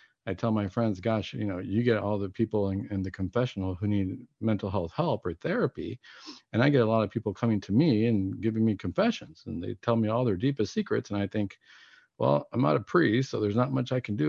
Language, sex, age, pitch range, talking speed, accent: English, male, 50-69, 105-135 Hz, 250 wpm, American